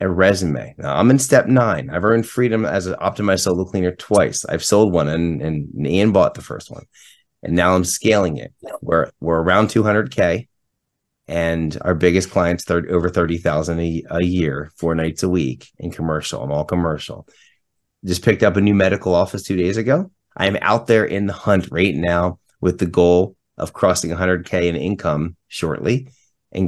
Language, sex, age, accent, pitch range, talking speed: English, male, 30-49, American, 85-120 Hz, 190 wpm